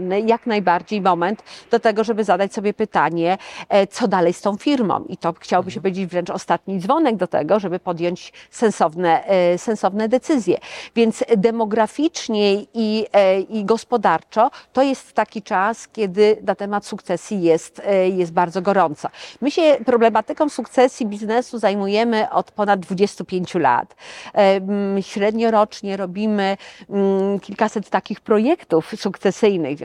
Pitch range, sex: 190-230 Hz, female